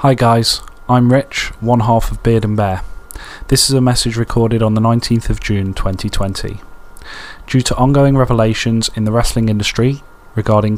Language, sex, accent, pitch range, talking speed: English, male, British, 105-120 Hz, 165 wpm